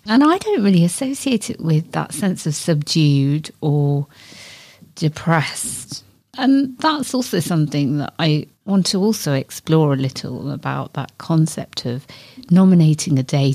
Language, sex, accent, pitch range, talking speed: English, female, British, 150-190 Hz, 140 wpm